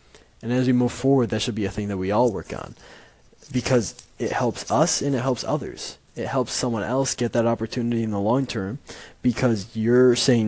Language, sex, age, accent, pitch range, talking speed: English, male, 20-39, American, 105-125 Hz, 210 wpm